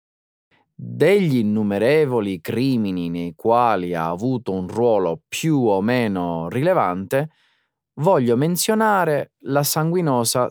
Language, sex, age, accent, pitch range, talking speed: Italian, male, 30-49, native, 100-150 Hz, 95 wpm